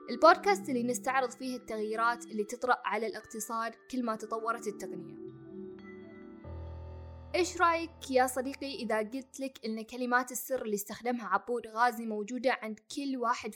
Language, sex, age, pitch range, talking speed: Arabic, female, 20-39, 220-280 Hz, 135 wpm